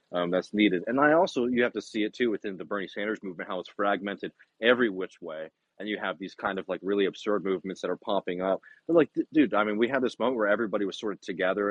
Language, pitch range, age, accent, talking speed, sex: English, 95-120 Hz, 30-49, American, 270 wpm, male